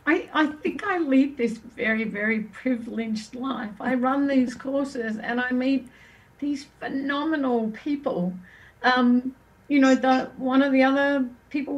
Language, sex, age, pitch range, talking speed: English, female, 50-69, 245-280 Hz, 145 wpm